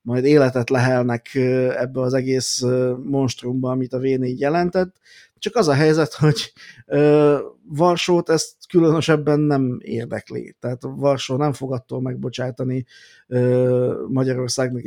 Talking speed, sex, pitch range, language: 115 wpm, male, 125-140 Hz, Hungarian